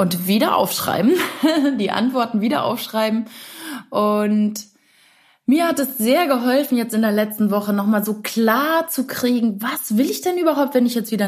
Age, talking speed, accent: 20-39, 170 wpm, German